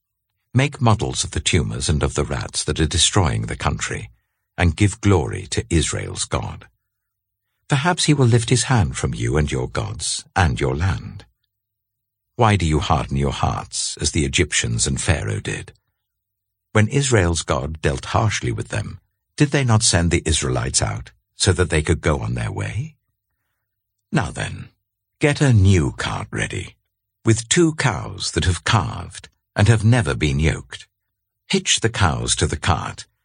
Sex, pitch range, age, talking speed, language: male, 90-115 Hz, 60-79, 165 wpm, English